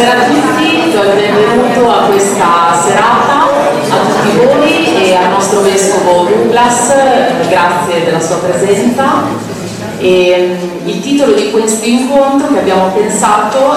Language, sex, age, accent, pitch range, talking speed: Italian, female, 30-49, native, 170-210 Hz, 130 wpm